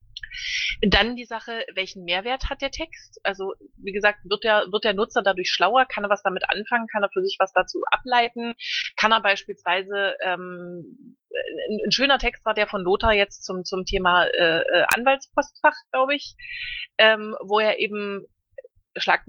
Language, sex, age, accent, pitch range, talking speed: German, female, 30-49, German, 180-245 Hz, 170 wpm